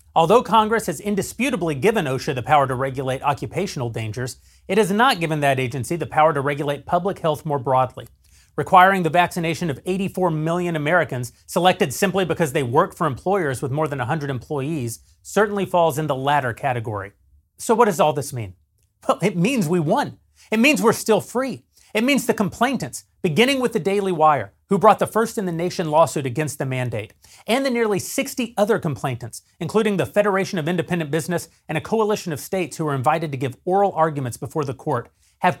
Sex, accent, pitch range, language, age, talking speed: male, American, 130-195 Hz, English, 30-49, 190 wpm